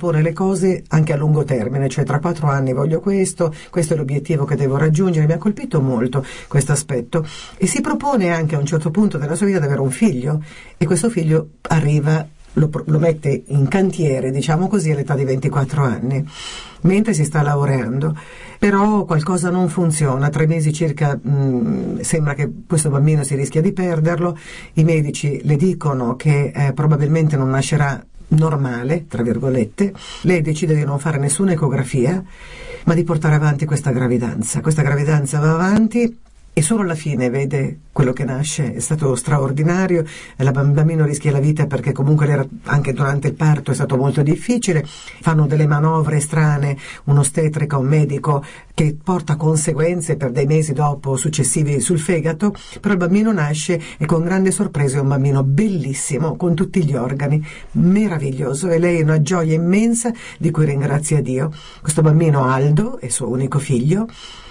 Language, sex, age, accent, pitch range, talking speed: Italian, female, 50-69, native, 140-170 Hz, 170 wpm